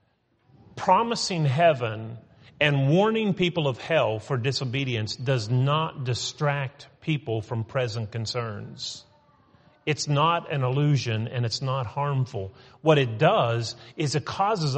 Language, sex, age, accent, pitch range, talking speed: English, male, 40-59, American, 120-155 Hz, 120 wpm